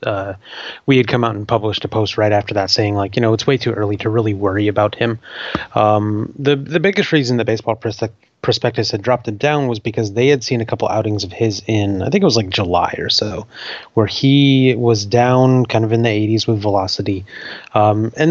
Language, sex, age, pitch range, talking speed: English, male, 30-49, 105-125 Hz, 235 wpm